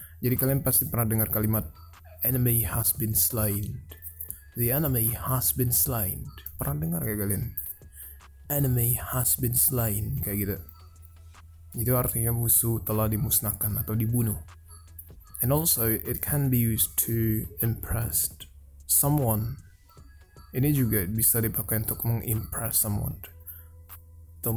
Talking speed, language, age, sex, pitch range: 120 wpm, Indonesian, 20-39, male, 85-120 Hz